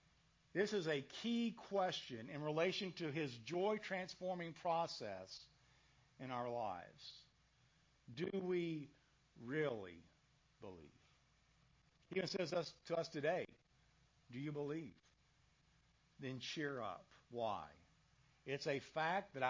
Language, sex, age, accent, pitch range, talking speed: English, male, 60-79, American, 140-185 Hz, 110 wpm